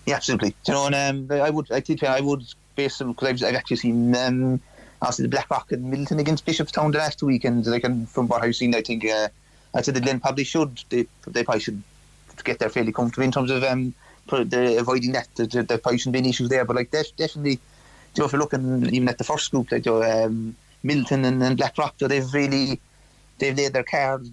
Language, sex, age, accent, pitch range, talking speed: English, male, 30-49, British, 125-140 Hz, 235 wpm